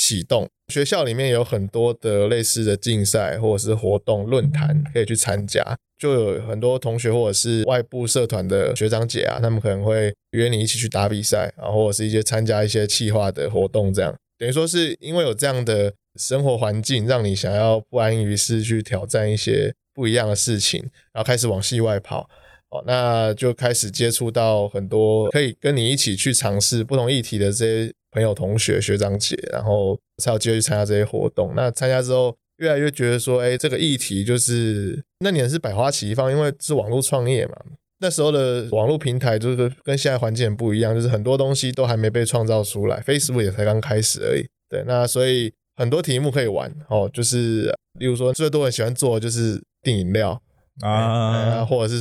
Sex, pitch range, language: male, 110-125 Hz, Chinese